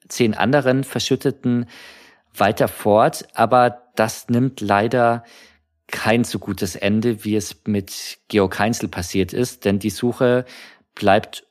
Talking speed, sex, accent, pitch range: 125 wpm, male, German, 105-125 Hz